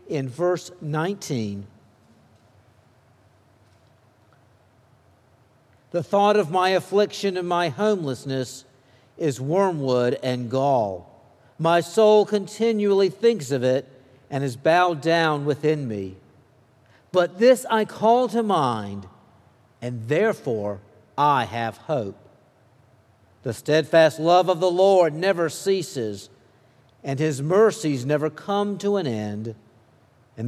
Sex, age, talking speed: male, 50-69, 110 wpm